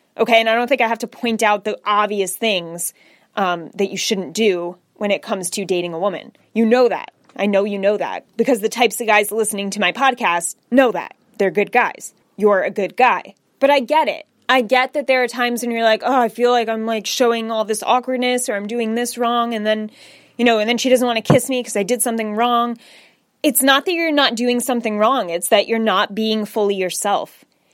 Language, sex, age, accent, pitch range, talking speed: English, female, 20-39, American, 210-270 Hz, 240 wpm